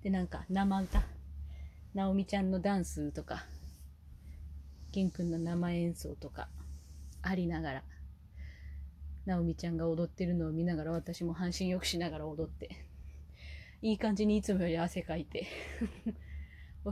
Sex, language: female, Japanese